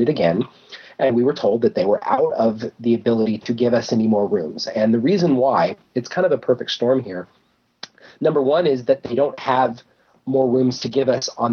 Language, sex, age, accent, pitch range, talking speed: English, male, 40-59, American, 115-150 Hz, 220 wpm